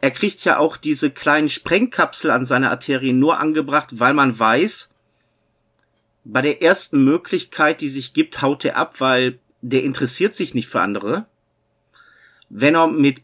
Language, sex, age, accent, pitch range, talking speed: German, male, 50-69, German, 130-190 Hz, 160 wpm